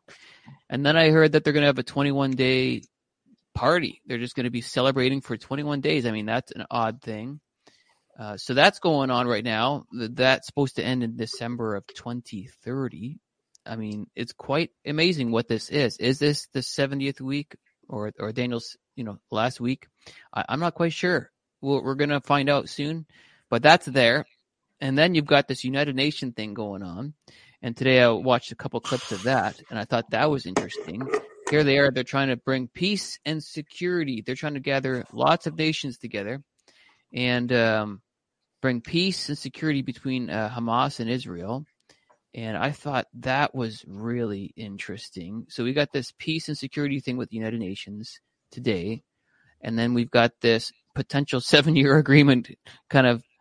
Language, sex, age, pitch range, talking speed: English, male, 30-49, 120-145 Hz, 180 wpm